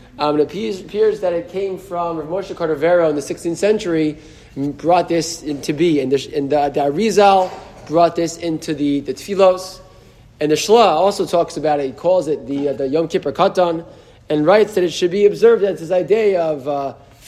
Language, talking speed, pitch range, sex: English, 190 wpm, 150-195 Hz, male